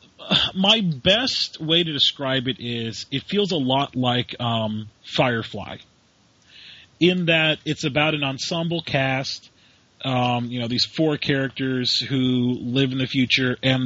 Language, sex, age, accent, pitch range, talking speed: English, male, 30-49, American, 115-145 Hz, 145 wpm